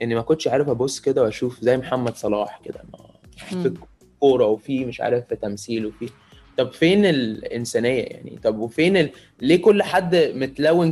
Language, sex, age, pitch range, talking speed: Arabic, male, 20-39, 125-165 Hz, 170 wpm